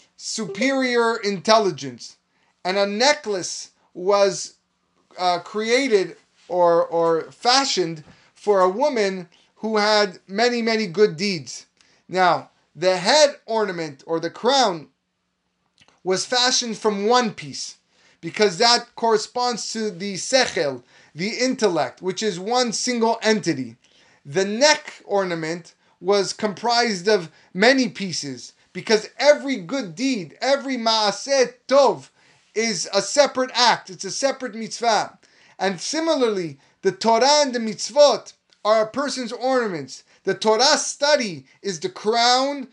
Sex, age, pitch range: male, 20-39, 185-250 Hz